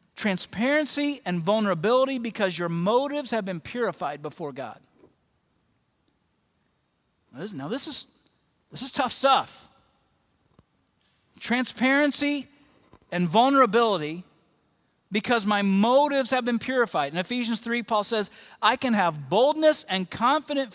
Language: English